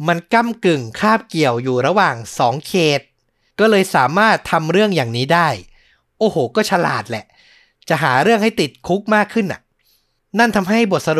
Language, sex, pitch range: Thai, male, 130-180 Hz